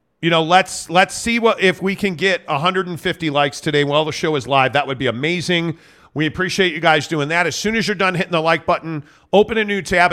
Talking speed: 245 wpm